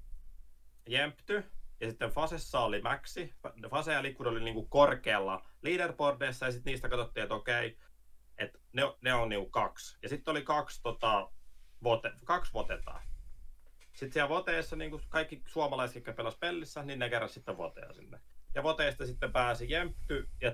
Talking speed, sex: 160 wpm, male